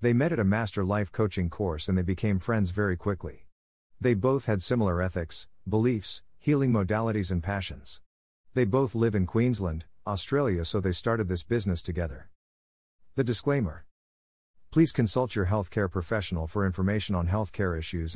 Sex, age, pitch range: male, 50-69, 85-115 Hz